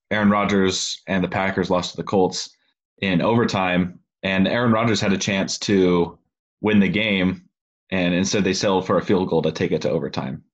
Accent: American